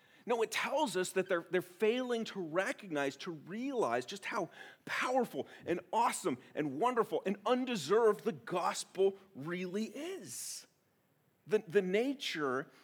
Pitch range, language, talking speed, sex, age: 150-225 Hz, English, 130 wpm, male, 40-59